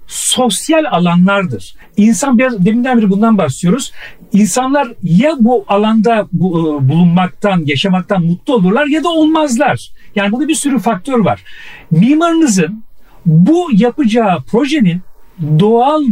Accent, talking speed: native, 110 wpm